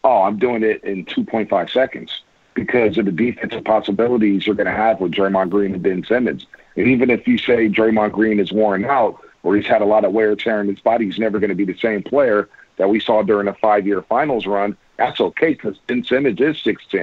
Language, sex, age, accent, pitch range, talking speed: English, male, 50-69, American, 105-135 Hz, 230 wpm